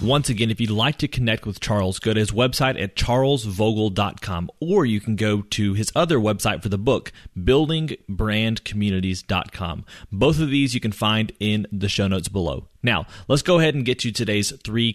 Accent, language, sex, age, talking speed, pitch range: American, English, male, 30-49, 190 wpm, 100-130 Hz